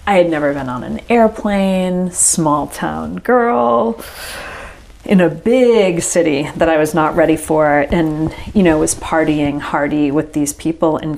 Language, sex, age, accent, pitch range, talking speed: English, female, 40-59, American, 135-165 Hz, 160 wpm